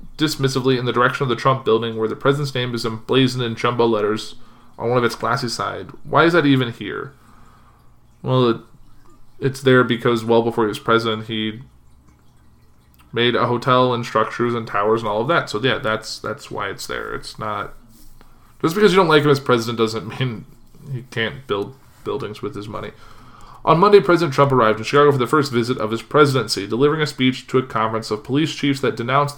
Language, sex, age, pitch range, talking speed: English, male, 20-39, 115-140 Hz, 205 wpm